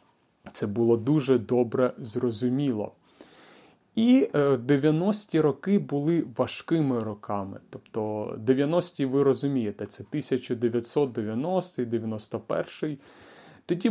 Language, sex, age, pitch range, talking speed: Ukrainian, male, 30-49, 115-150 Hz, 80 wpm